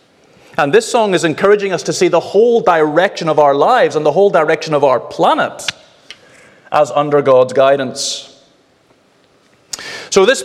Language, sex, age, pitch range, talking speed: English, male, 30-49, 145-180 Hz, 155 wpm